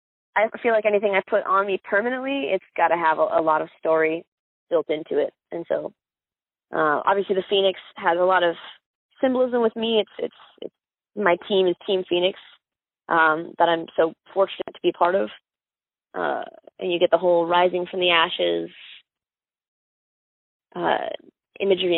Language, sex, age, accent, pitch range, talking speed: English, female, 20-39, American, 180-250 Hz, 170 wpm